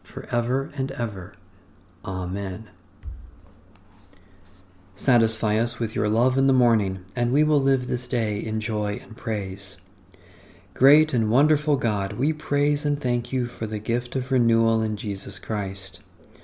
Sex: male